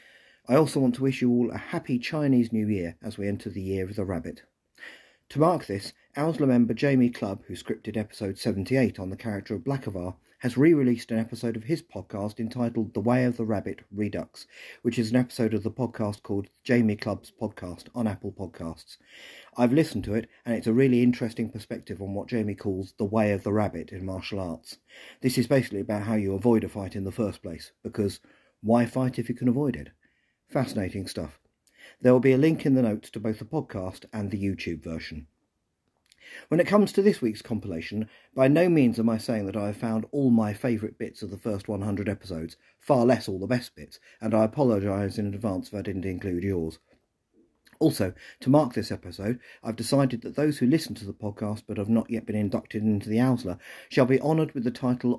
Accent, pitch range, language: British, 100-125 Hz, English